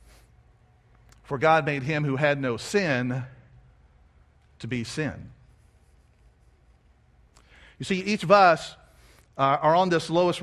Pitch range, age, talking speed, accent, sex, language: 125-195 Hz, 50-69, 120 wpm, American, male, English